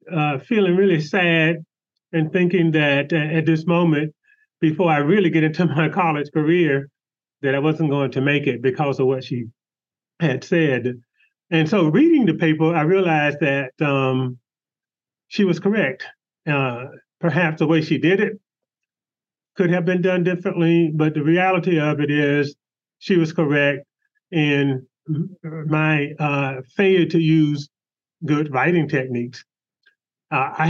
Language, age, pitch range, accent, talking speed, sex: English, 30-49, 140-170 Hz, American, 145 wpm, male